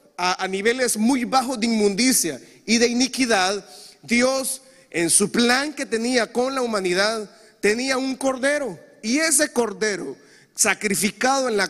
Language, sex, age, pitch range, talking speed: Spanish, male, 30-49, 195-265 Hz, 145 wpm